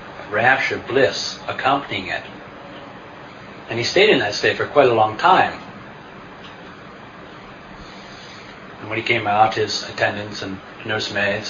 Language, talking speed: English, 125 wpm